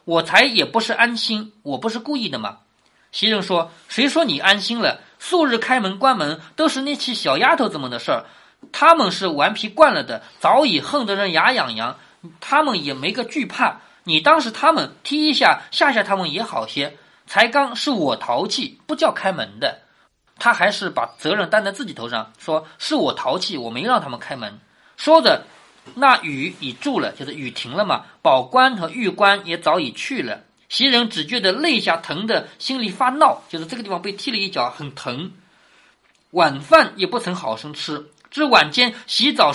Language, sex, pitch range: Chinese, male, 185-285 Hz